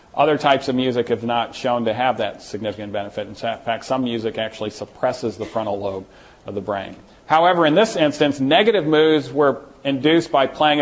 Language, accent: English, American